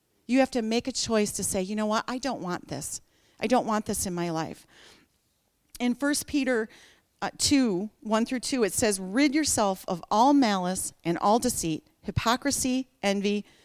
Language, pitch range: English, 185-255 Hz